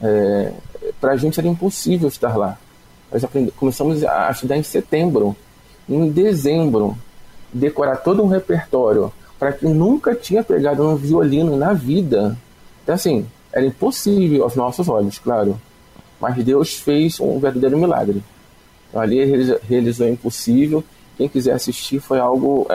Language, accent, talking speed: Portuguese, Brazilian, 145 wpm